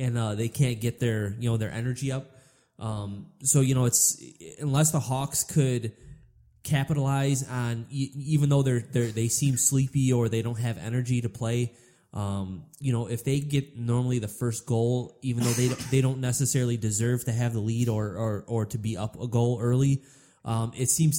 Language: English